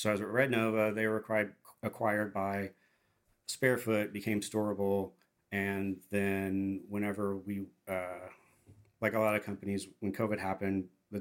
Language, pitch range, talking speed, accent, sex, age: English, 95-110 Hz, 145 wpm, American, male, 40-59